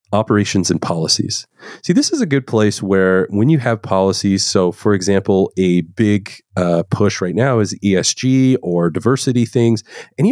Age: 30-49